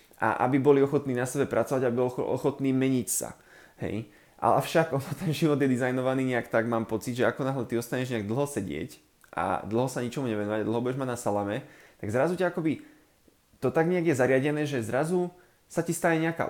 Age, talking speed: 20-39, 205 wpm